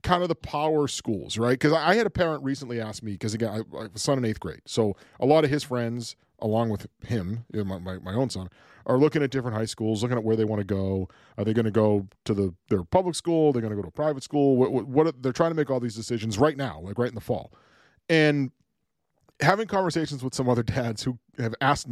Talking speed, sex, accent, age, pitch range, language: 265 wpm, male, American, 40-59, 110-145 Hz, English